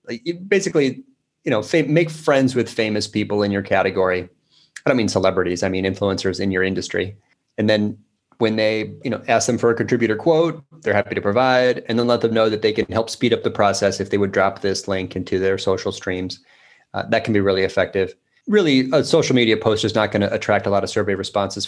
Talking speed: 225 wpm